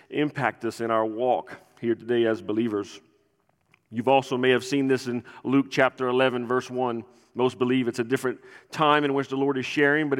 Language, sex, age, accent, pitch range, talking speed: English, male, 40-59, American, 125-150 Hz, 200 wpm